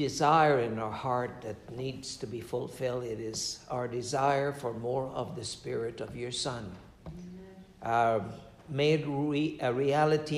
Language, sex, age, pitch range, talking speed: English, male, 60-79, 110-140 Hz, 145 wpm